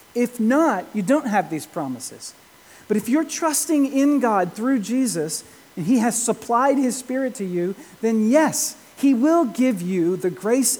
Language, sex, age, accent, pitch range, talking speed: English, male, 40-59, American, 175-245 Hz, 170 wpm